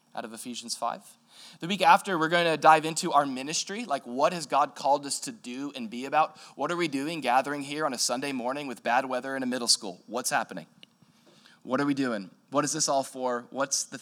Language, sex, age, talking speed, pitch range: English, male, 20-39, 235 wpm, 125-160 Hz